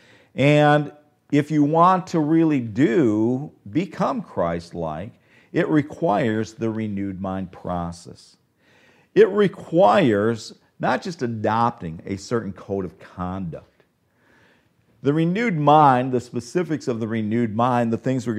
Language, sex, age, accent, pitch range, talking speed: English, male, 50-69, American, 100-140 Hz, 120 wpm